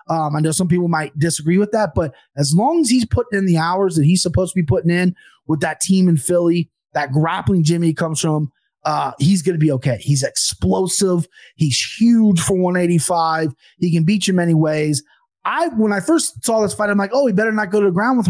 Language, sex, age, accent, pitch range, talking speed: English, male, 30-49, American, 150-195 Hz, 235 wpm